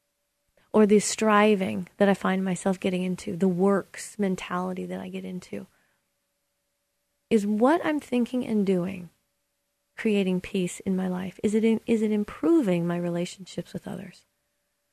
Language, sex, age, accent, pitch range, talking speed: English, female, 30-49, American, 180-220 Hz, 140 wpm